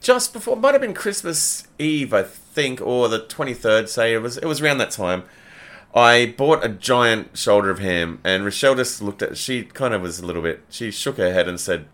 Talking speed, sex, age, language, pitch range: 230 wpm, male, 30-49, English, 105-155 Hz